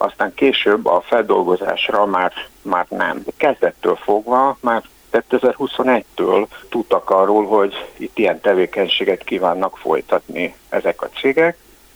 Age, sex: 60-79, male